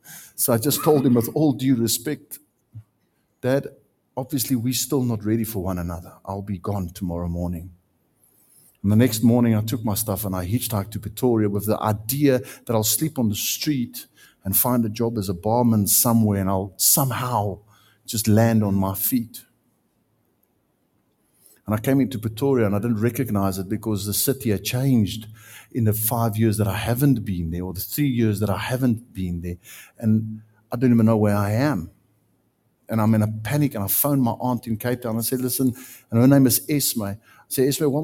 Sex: male